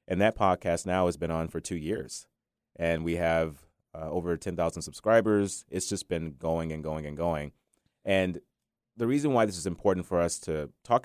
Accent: American